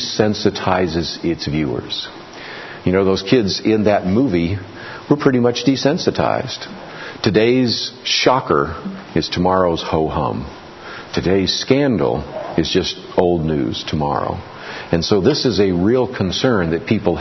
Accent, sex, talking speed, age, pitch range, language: American, male, 120 wpm, 50-69, 90-115 Hz, English